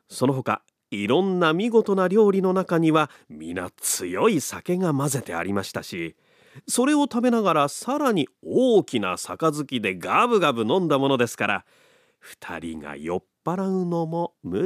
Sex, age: male, 40-59